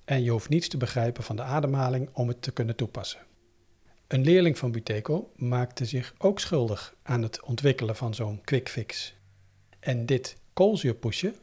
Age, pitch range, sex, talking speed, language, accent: 50-69, 115-155 Hz, male, 170 wpm, Dutch, Dutch